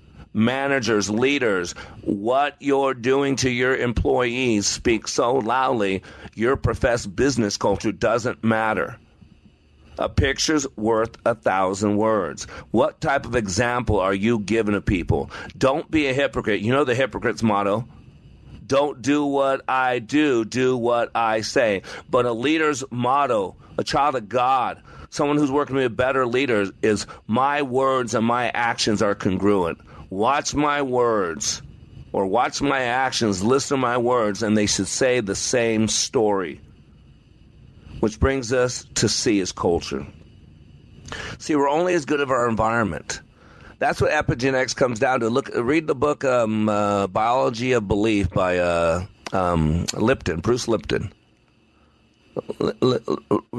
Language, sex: English, male